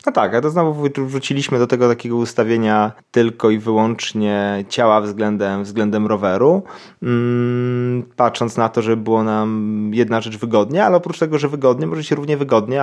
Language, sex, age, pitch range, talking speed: Polish, male, 20-39, 105-130 Hz, 170 wpm